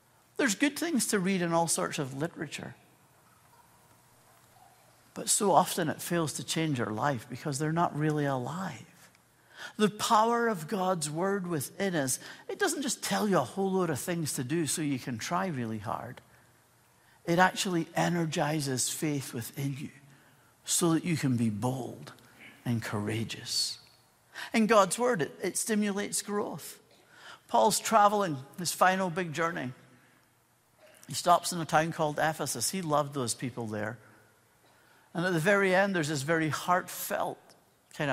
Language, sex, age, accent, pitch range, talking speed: English, male, 60-79, American, 135-185 Hz, 155 wpm